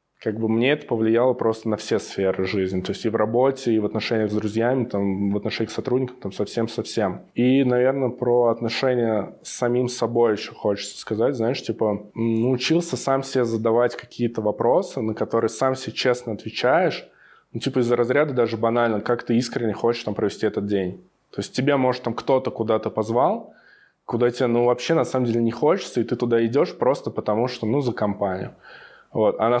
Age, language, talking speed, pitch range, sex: 20-39, Russian, 190 wpm, 105-120 Hz, male